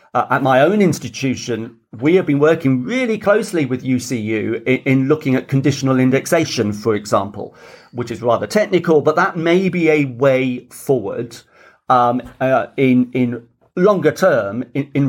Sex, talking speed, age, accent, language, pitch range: male, 160 wpm, 40-59, British, English, 115-150 Hz